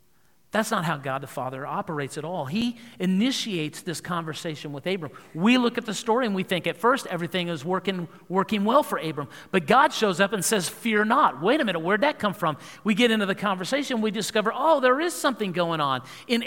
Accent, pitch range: American, 155-245 Hz